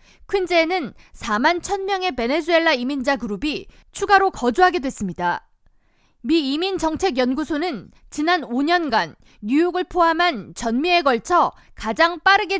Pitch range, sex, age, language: 260-350 Hz, female, 20-39, Korean